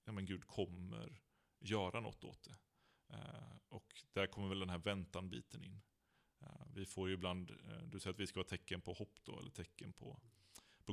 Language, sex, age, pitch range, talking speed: Swedish, male, 30-49, 95-110 Hz, 210 wpm